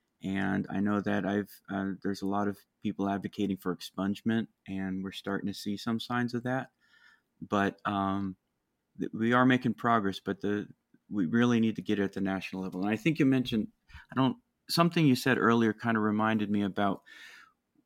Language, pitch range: English, 100-115 Hz